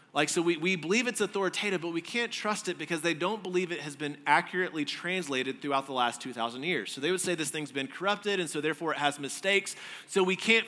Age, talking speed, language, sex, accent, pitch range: 30-49, 240 wpm, English, male, American, 145-185 Hz